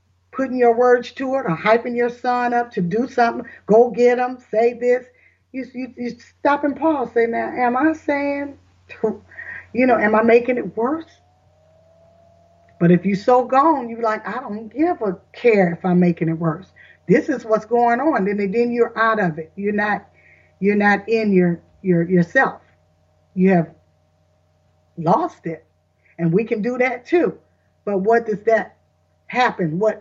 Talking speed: 180 wpm